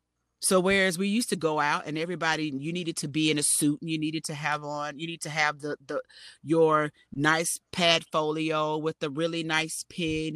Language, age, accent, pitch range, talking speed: English, 40-59, American, 145-185 Hz, 215 wpm